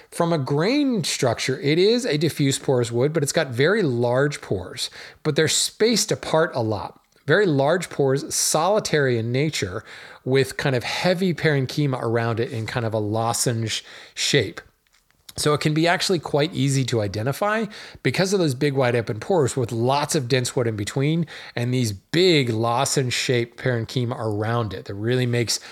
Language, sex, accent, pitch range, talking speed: English, male, American, 120-150 Hz, 175 wpm